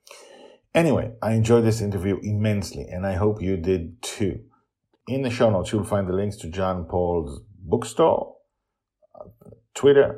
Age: 40-59